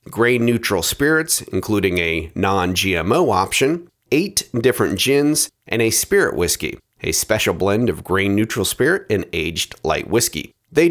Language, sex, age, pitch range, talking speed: English, male, 40-59, 100-155 Hz, 130 wpm